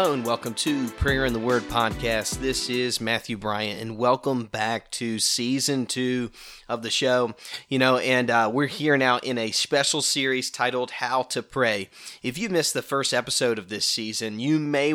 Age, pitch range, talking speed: 30-49, 115-135 Hz, 185 wpm